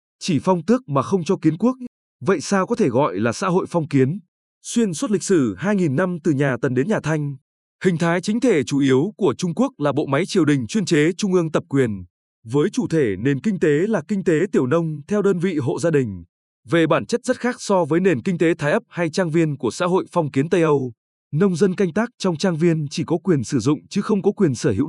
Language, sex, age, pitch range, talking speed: Vietnamese, male, 20-39, 145-200 Hz, 260 wpm